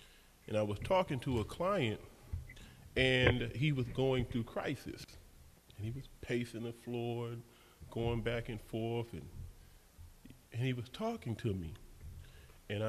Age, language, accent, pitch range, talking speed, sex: 30-49, English, American, 105-150 Hz, 150 wpm, male